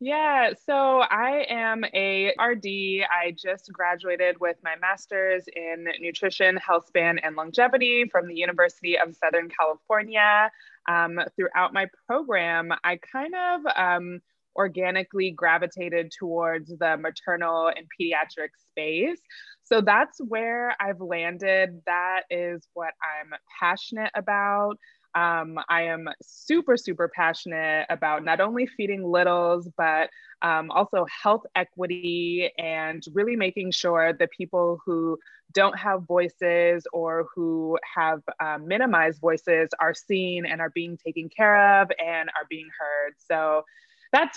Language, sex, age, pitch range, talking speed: English, female, 20-39, 170-210 Hz, 130 wpm